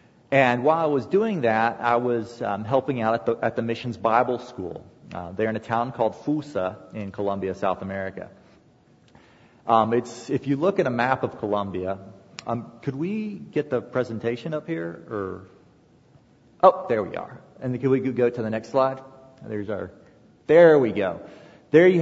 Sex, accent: male, American